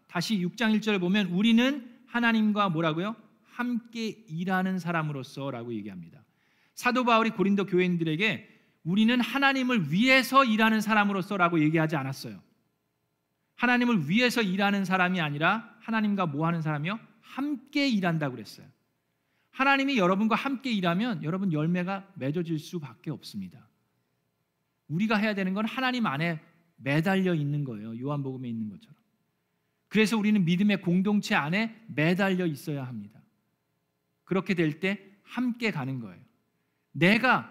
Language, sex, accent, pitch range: Korean, male, native, 170-230 Hz